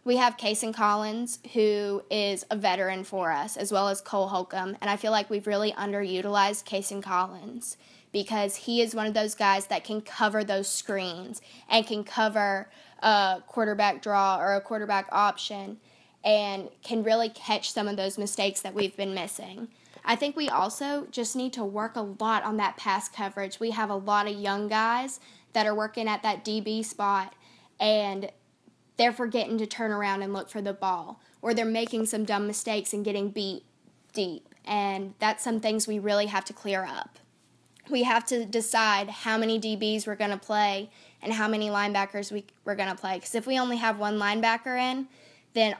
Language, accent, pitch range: English, American, 195-220 Hz